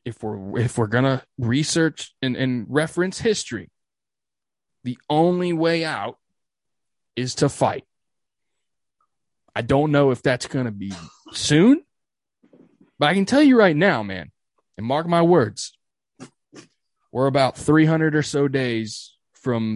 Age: 20-39